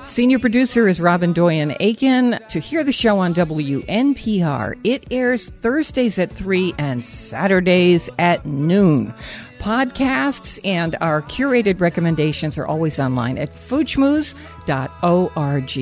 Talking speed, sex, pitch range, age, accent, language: 120 wpm, female, 160-225 Hz, 60-79, American, English